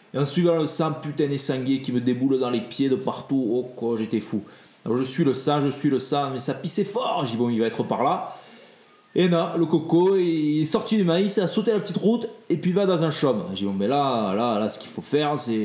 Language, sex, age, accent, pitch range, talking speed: French, male, 20-39, French, 130-175 Hz, 280 wpm